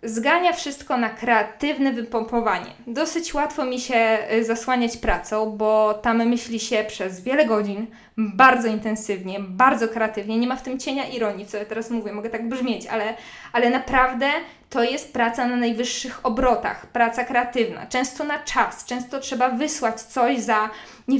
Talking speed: 155 wpm